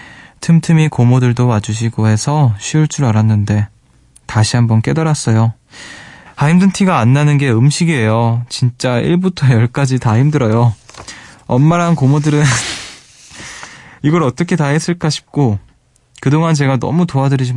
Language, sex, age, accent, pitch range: Korean, male, 20-39, native, 115-140 Hz